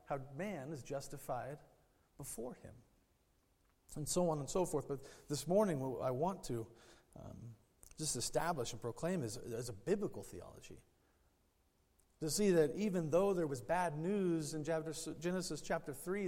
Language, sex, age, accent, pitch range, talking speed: English, male, 40-59, American, 125-165 Hz, 155 wpm